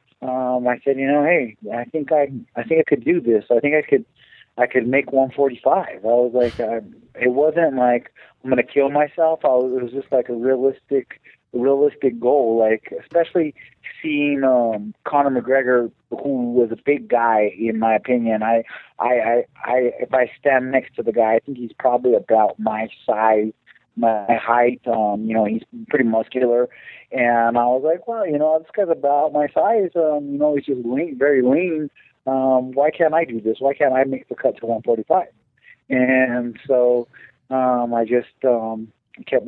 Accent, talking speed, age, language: American, 195 wpm, 30-49, English